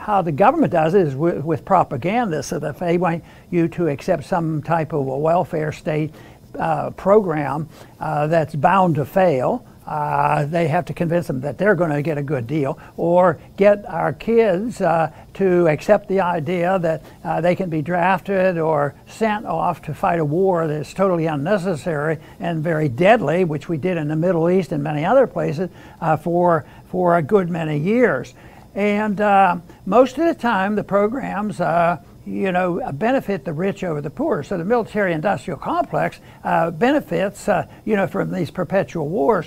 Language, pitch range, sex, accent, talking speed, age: English, 160-205 Hz, male, American, 180 wpm, 60-79